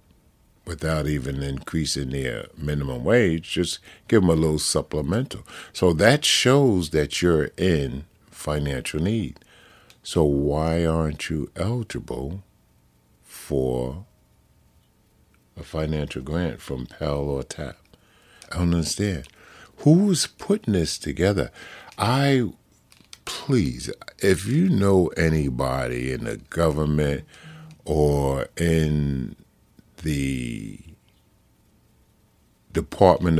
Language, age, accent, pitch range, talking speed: English, 50-69, American, 75-100 Hz, 95 wpm